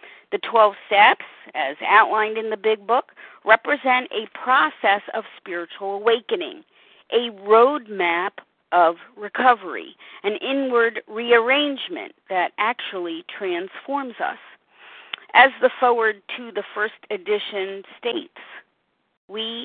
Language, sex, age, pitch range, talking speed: English, female, 50-69, 205-285 Hz, 105 wpm